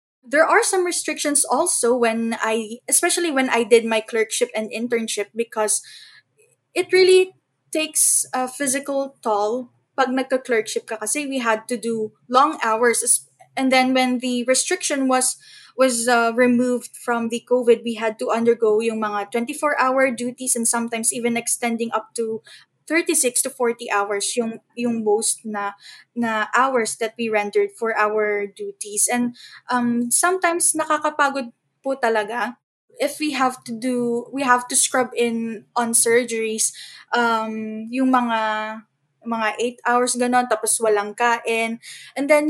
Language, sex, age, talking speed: Filipino, female, 20-39, 145 wpm